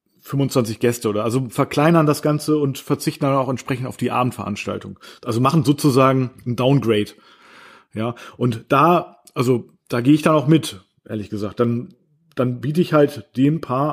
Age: 40-59